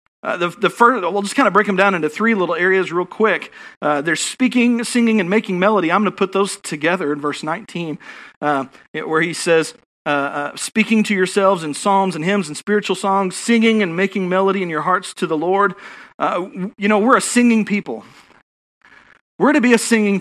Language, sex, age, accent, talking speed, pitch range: English, male, 40-59, American, 210 wpm, 190-240 Hz